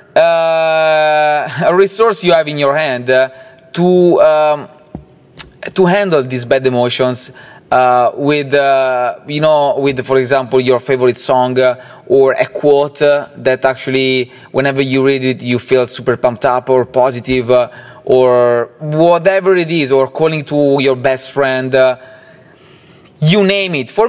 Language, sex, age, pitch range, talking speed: English, male, 20-39, 130-175 Hz, 150 wpm